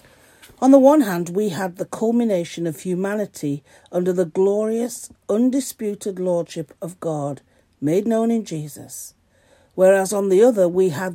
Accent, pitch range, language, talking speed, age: British, 160-210 Hz, English, 145 wpm, 50-69